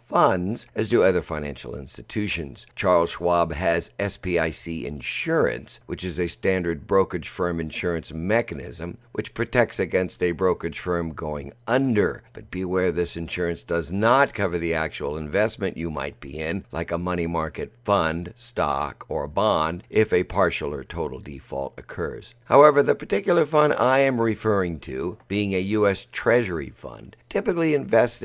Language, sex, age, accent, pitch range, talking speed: English, male, 60-79, American, 80-100 Hz, 150 wpm